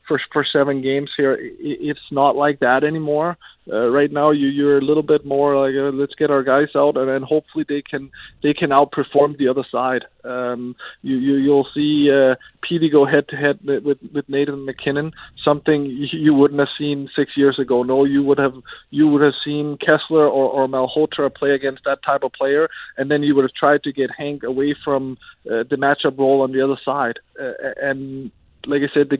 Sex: male